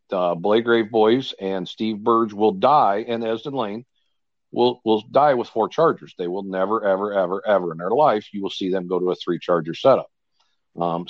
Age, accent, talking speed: 50-69, American, 200 wpm